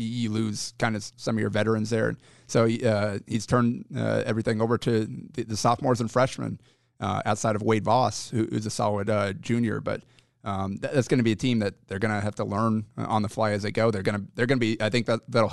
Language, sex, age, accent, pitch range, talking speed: English, male, 30-49, American, 105-120 Hz, 250 wpm